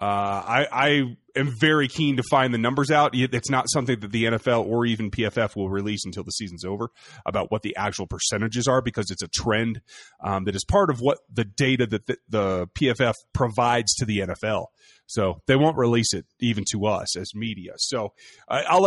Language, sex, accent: English, male, American